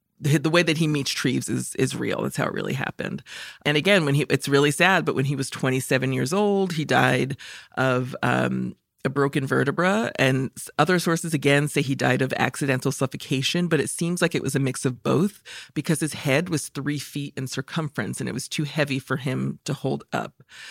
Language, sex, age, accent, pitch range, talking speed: English, female, 40-59, American, 130-160 Hz, 210 wpm